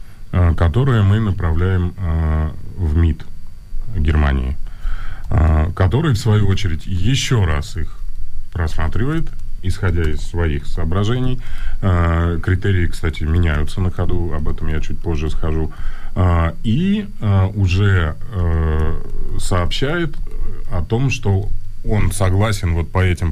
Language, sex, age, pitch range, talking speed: Russian, male, 20-39, 80-100 Hz, 105 wpm